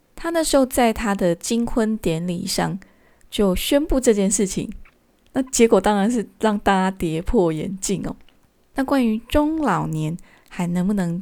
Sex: female